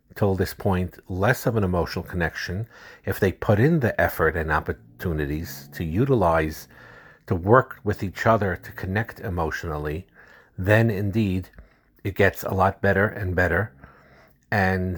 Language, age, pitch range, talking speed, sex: English, 50-69, 90-110 Hz, 145 wpm, male